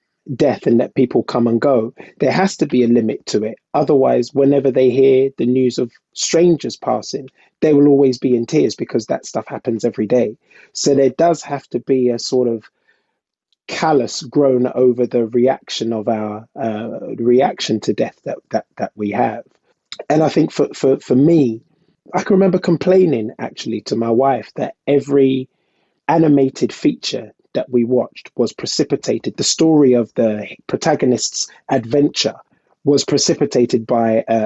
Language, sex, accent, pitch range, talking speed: English, male, British, 120-160 Hz, 165 wpm